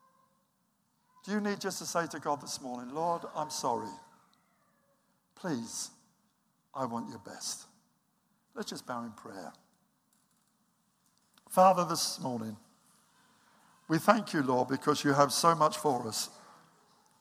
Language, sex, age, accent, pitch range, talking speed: English, male, 60-79, British, 140-210 Hz, 130 wpm